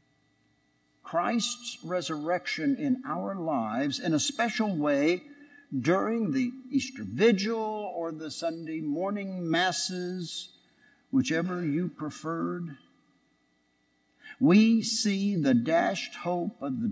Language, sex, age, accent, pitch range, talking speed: English, male, 60-79, American, 175-260 Hz, 100 wpm